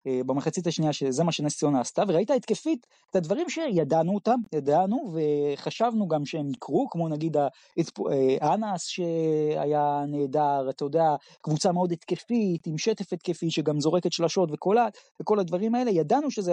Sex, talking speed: male, 140 wpm